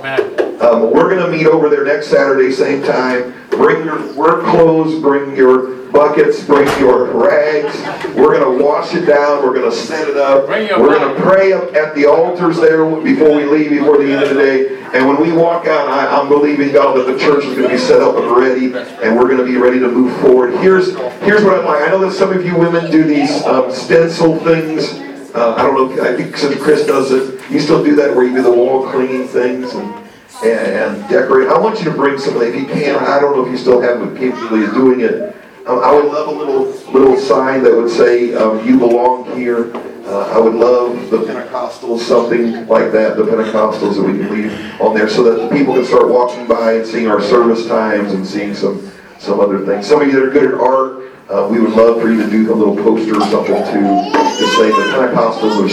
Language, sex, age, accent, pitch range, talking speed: English, male, 50-69, American, 120-160 Hz, 240 wpm